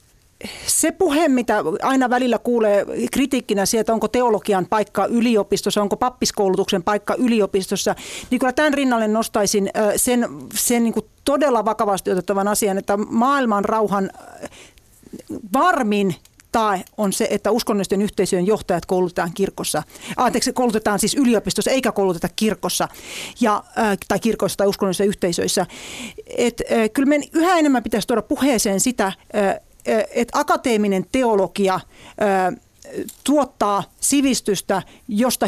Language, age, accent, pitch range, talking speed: Finnish, 40-59, native, 195-240 Hz, 120 wpm